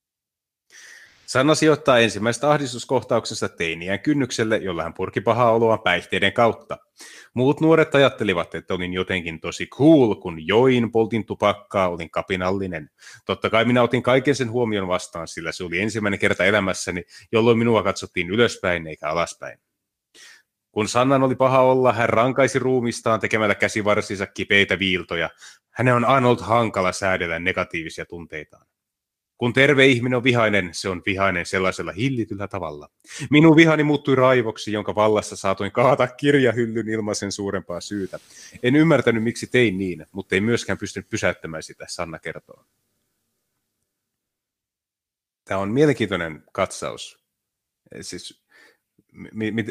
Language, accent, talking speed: Finnish, native, 135 wpm